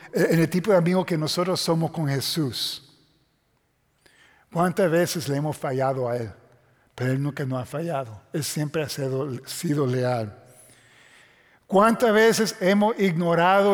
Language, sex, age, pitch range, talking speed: Spanish, male, 50-69, 150-190 Hz, 145 wpm